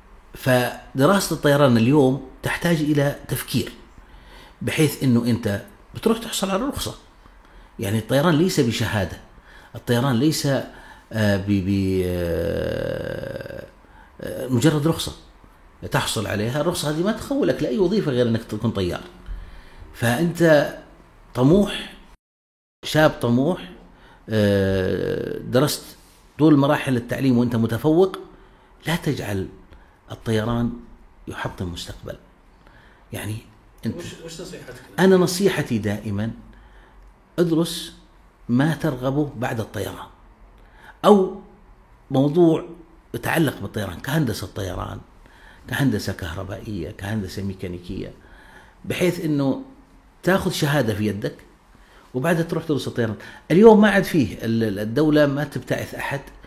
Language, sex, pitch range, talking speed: Arabic, male, 105-160 Hz, 95 wpm